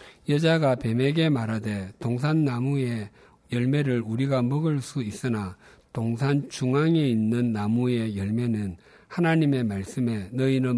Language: Korean